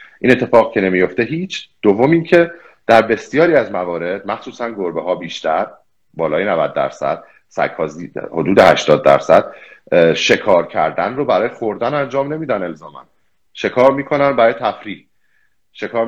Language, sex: Persian, male